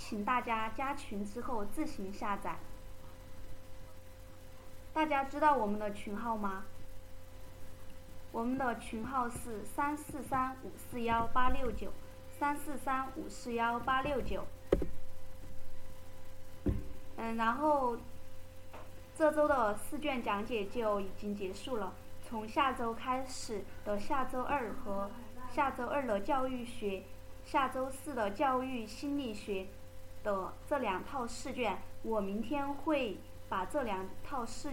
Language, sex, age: Chinese, female, 20-39